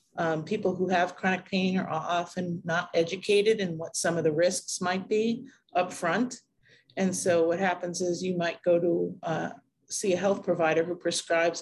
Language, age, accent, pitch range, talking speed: English, 40-59, American, 160-185 Hz, 185 wpm